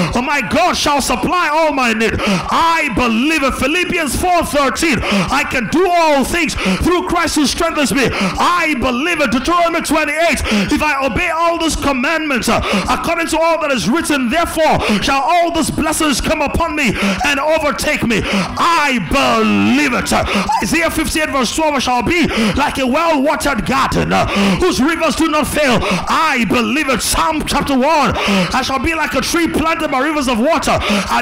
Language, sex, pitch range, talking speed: English, male, 250-315 Hz, 170 wpm